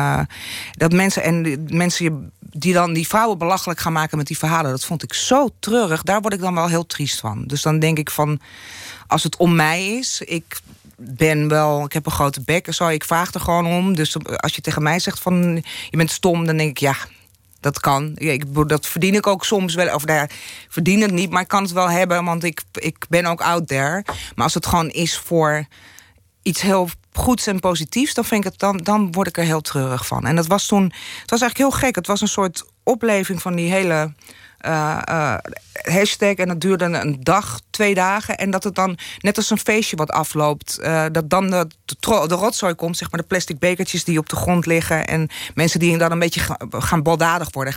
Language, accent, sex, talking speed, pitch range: Dutch, Dutch, female, 235 wpm, 150-190 Hz